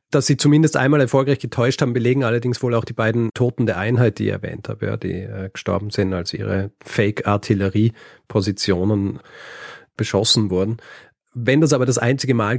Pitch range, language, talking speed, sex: 110-130 Hz, German, 165 wpm, male